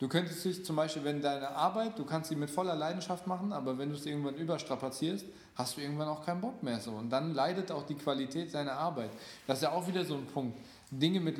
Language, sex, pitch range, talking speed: German, male, 130-165 Hz, 245 wpm